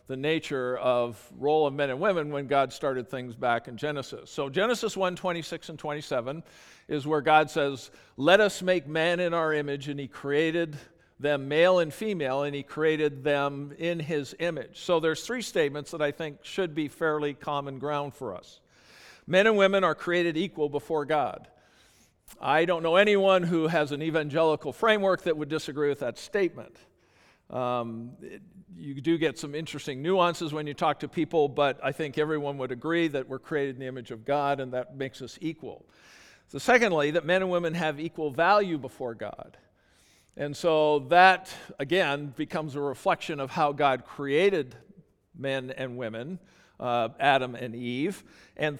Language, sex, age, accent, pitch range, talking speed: English, male, 50-69, American, 140-170 Hz, 175 wpm